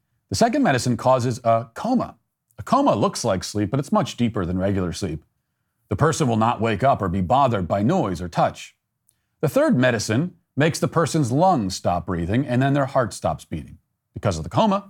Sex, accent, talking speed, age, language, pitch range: male, American, 200 wpm, 40-59, English, 105-135 Hz